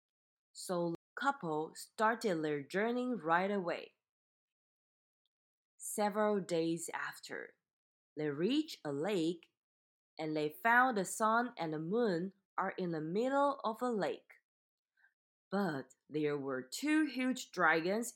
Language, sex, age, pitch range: Chinese, female, 20-39, 160-240 Hz